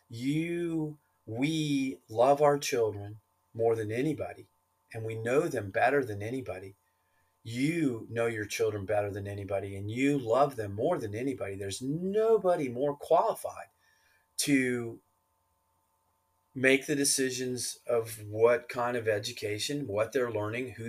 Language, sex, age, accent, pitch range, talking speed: English, male, 30-49, American, 110-145 Hz, 130 wpm